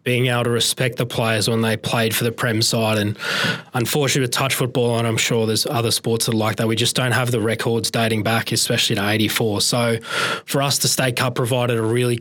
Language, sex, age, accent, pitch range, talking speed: English, male, 20-39, Australian, 115-130 Hz, 230 wpm